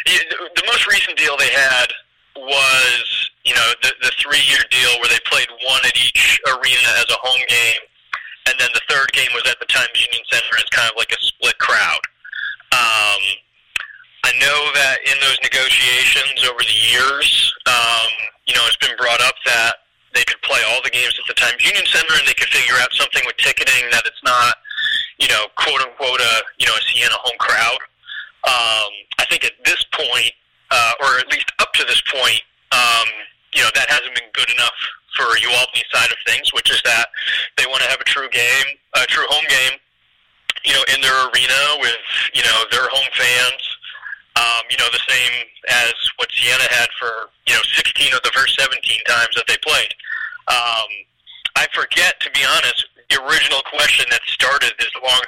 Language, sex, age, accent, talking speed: English, male, 30-49, American, 190 wpm